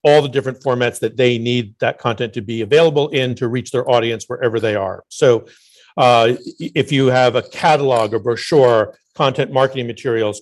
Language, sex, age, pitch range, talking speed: English, male, 50-69, 115-135 Hz, 185 wpm